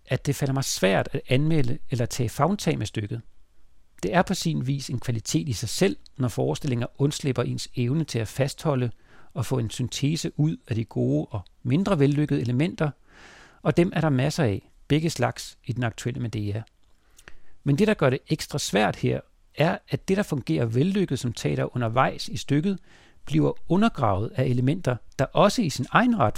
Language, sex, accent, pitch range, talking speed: Danish, male, native, 115-155 Hz, 190 wpm